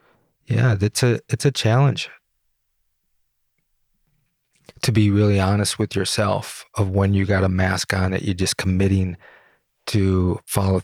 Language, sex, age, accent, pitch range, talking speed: English, male, 30-49, American, 90-105 Hz, 140 wpm